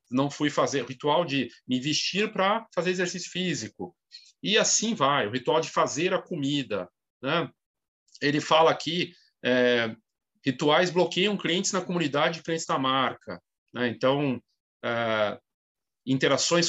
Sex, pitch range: male, 145-180 Hz